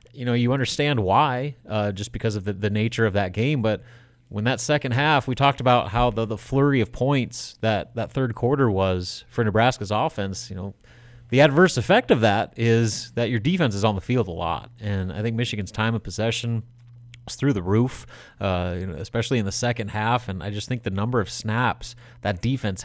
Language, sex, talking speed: English, male, 220 wpm